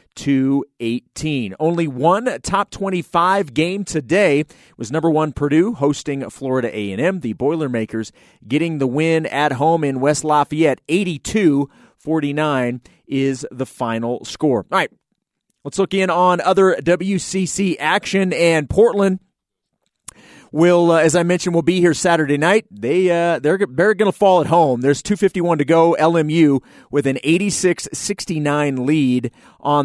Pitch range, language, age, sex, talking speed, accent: 140-180 Hz, English, 30-49, male, 145 wpm, American